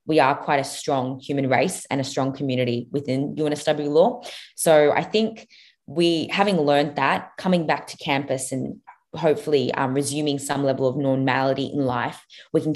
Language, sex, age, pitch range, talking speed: English, female, 20-39, 130-155 Hz, 175 wpm